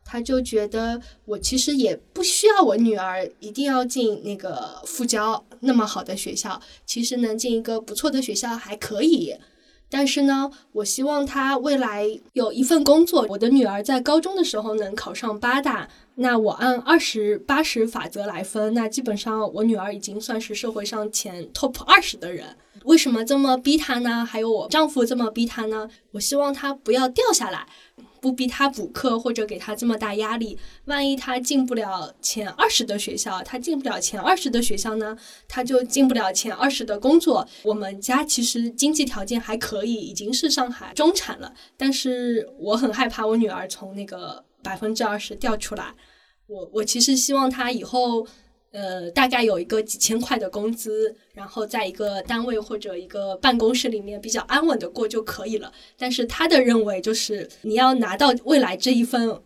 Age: 10-29